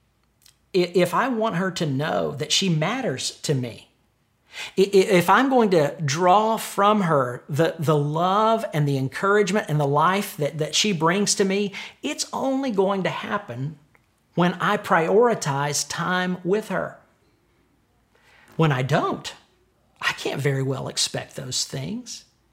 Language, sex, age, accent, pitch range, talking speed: English, male, 50-69, American, 140-200 Hz, 145 wpm